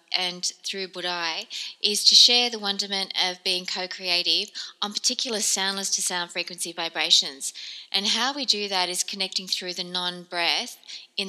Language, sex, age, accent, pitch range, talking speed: English, female, 20-39, Australian, 180-205 Hz, 145 wpm